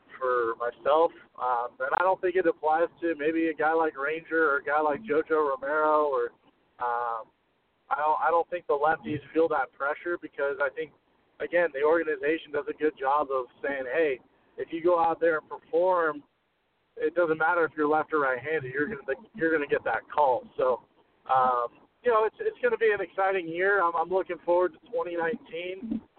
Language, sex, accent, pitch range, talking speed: English, male, American, 150-190 Hz, 205 wpm